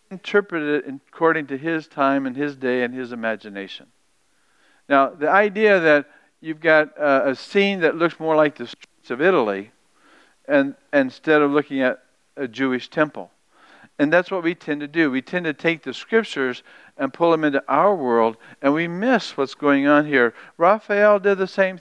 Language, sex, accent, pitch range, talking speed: English, male, American, 135-180 Hz, 180 wpm